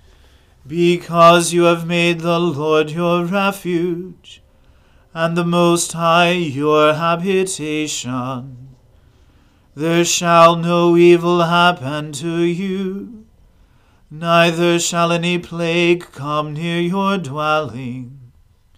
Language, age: English, 40-59